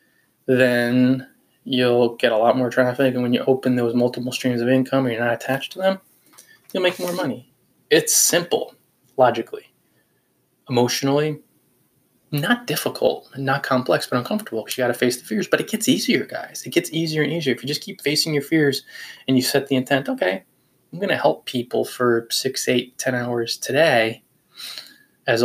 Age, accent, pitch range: 20-39, American, 120-145 Hz